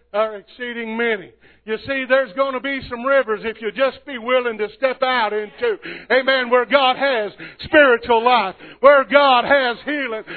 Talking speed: 170 wpm